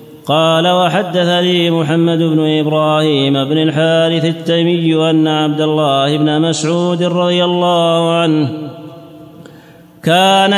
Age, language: 30-49, Arabic